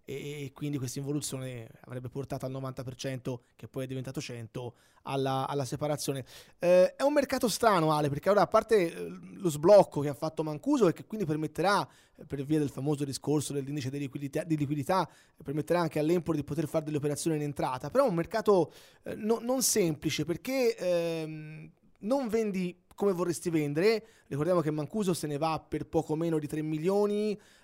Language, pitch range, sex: Italian, 140-180 Hz, male